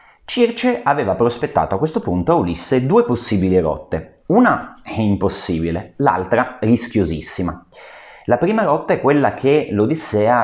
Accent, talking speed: native, 130 wpm